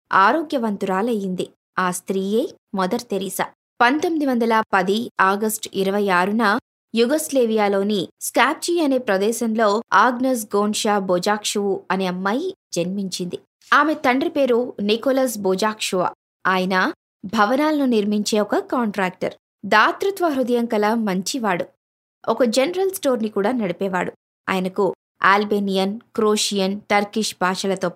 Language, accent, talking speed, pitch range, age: Telugu, native, 100 wpm, 195-260 Hz, 20-39